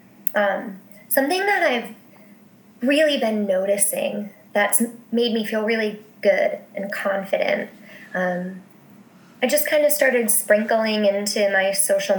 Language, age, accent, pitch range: English, 20-39, American, 205-235 Hz